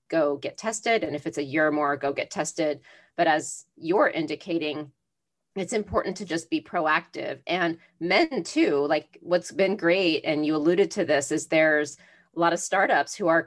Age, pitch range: 30-49, 155-195 Hz